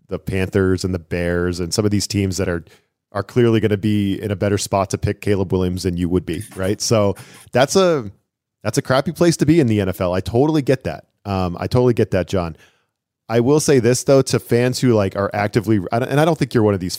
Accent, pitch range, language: American, 95-120 Hz, English